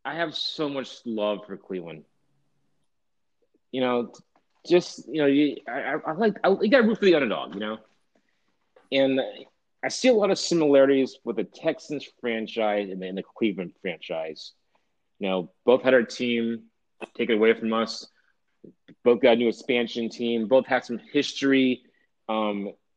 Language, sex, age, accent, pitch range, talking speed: English, male, 30-49, American, 110-145 Hz, 150 wpm